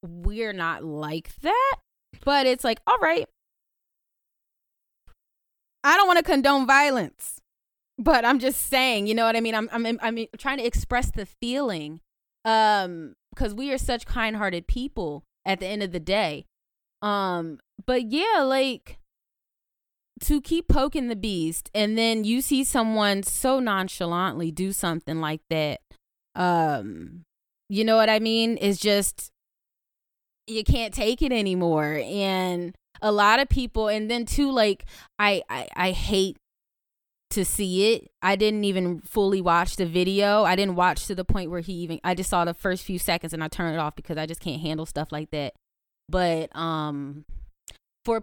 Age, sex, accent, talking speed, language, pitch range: 20-39, female, American, 165 wpm, English, 175-230 Hz